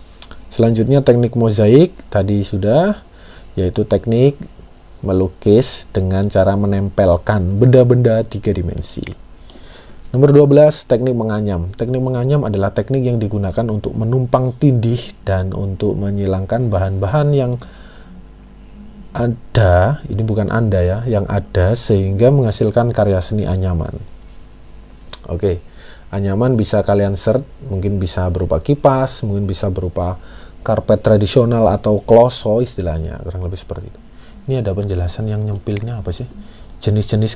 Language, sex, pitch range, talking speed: Indonesian, male, 95-120 Hz, 120 wpm